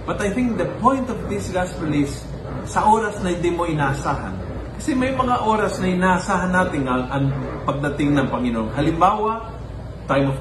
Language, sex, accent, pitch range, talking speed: Filipino, male, native, 130-175 Hz, 175 wpm